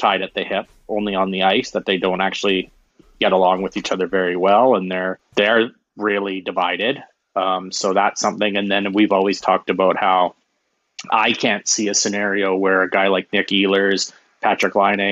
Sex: male